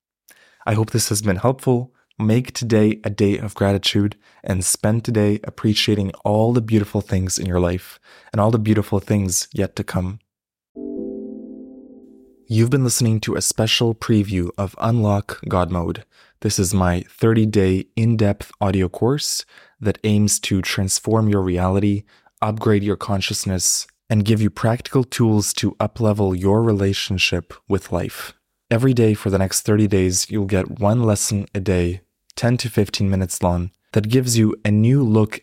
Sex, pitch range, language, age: male, 95-110 Hz, English, 20-39